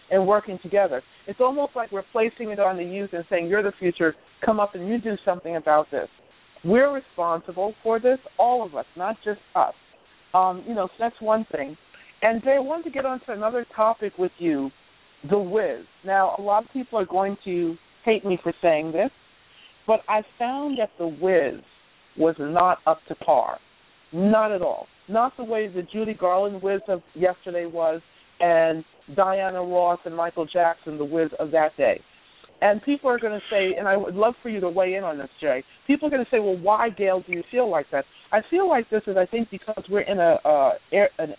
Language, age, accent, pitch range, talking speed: English, 50-69, American, 175-220 Hz, 215 wpm